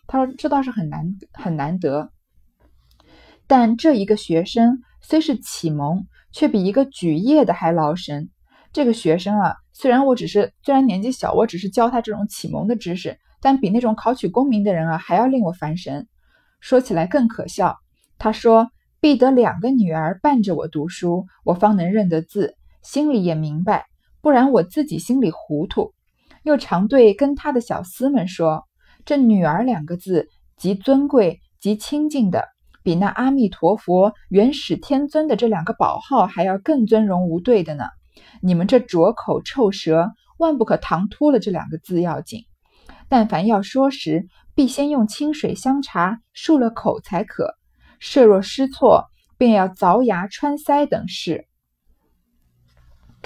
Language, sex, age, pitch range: Chinese, female, 20-39, 175-255 Hz